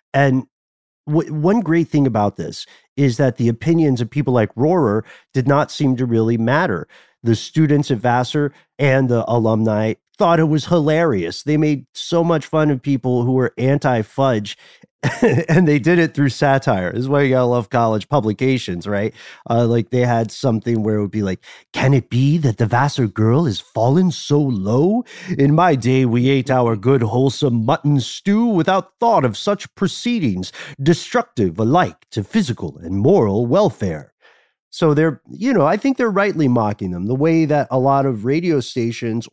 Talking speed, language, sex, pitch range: 180 wpm, English, male, 110-150 Hz